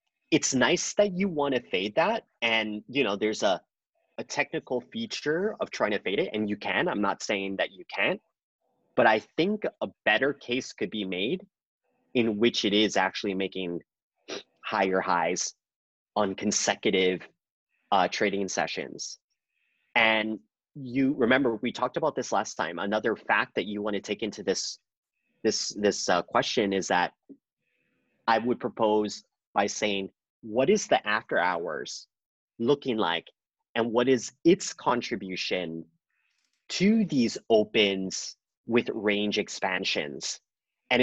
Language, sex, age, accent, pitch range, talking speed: English, male, 30-49, American, 100-150 Hz, 145 wpm